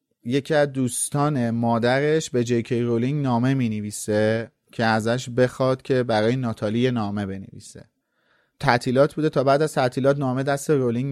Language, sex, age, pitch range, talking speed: Persian, male, 30-49, 110-135 Hz, 140 wpm